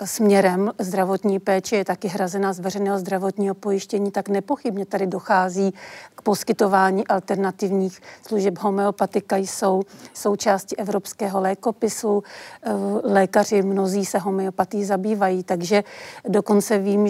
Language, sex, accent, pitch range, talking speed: Czech, female, native, 195-210 Hz, 110 wpm